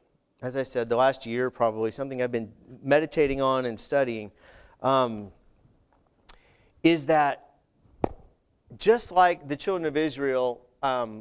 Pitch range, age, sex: 155-225 Hz, 30-49, male